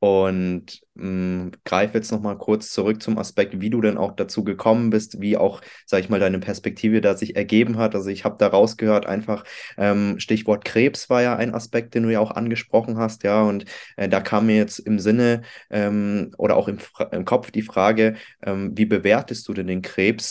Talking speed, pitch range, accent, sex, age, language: 205 wpm, 105-115 Hz, German, male, 20-39, German